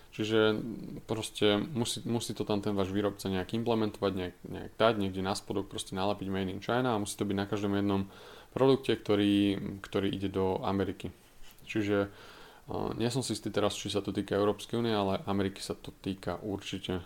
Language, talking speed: Slovak, 185 wpm